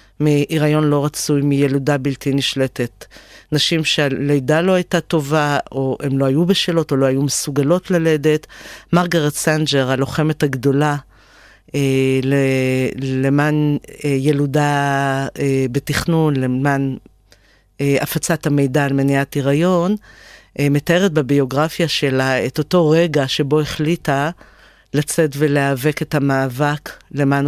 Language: Hebrew